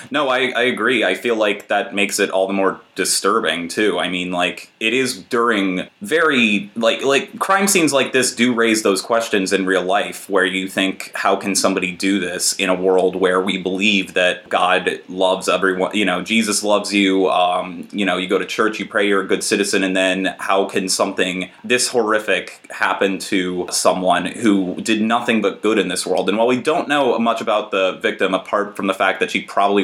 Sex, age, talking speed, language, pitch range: male, 30-49, 210 wpm, English, 95-115 Hz